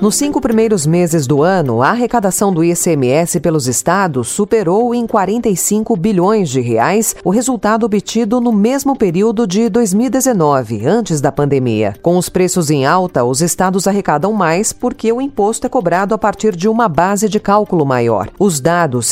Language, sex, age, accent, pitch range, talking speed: Portuguese, female, 40-59, Brazilian, 150-215 Hz, 165 wpm